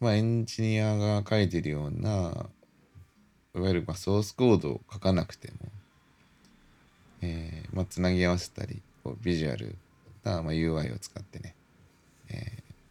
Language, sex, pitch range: Japanese, male, 85-110 Hz